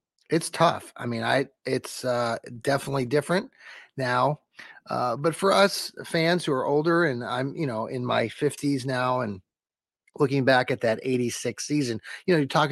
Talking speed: 175 wpm